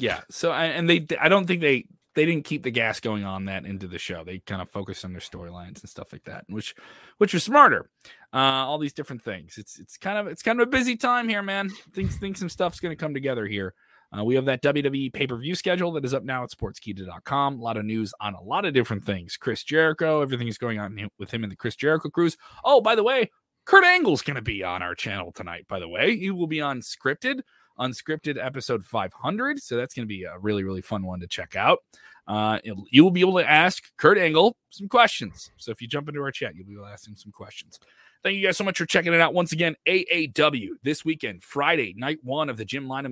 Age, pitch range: 20-39, 110-160 Hz